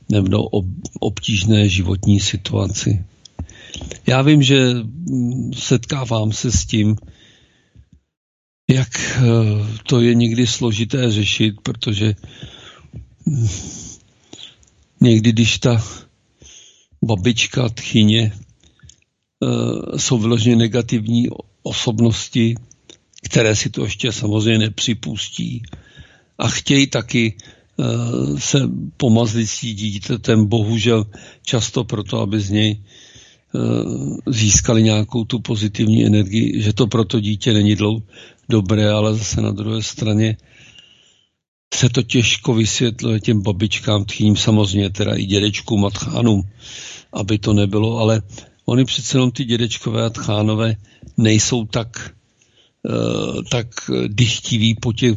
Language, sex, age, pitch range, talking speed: Czech, male, 50-69, 105-120 Hz, 100 wpm